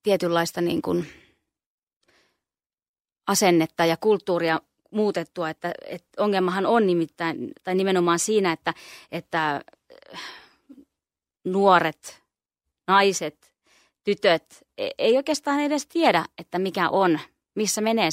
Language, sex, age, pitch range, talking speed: Finnish, female, 20-39, 170-215 Hz, 95 wpm